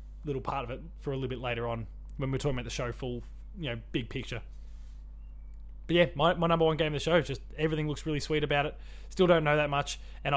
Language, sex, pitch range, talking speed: English, male, 125-155 Hz, 260 wpm